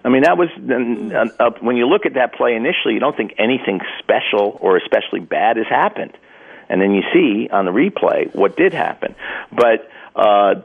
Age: 50-69